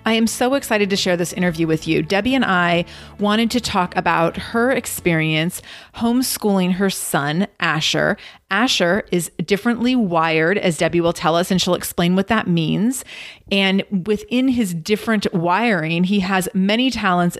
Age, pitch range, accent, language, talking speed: 30-49, 170-210 Hz, American, English, 160 wpm